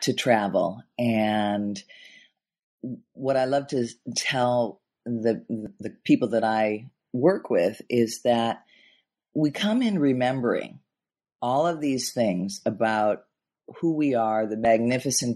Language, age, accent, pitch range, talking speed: English, 40-59, American, 110-140 Hz, 120 wpm